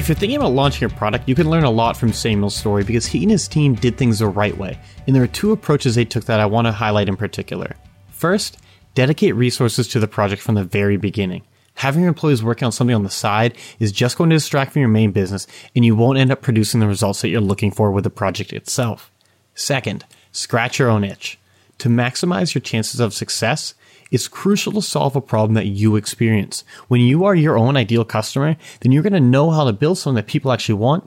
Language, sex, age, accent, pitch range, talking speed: English, male, 30-49, American, 110-145 Hz, 240 wpm